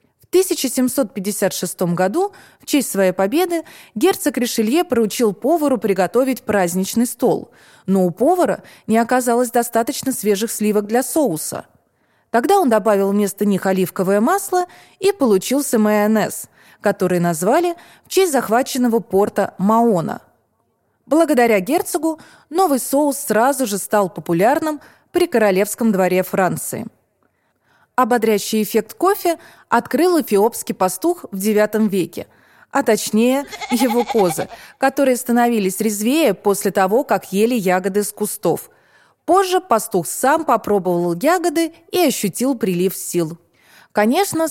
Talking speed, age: 115 wpm, 20-39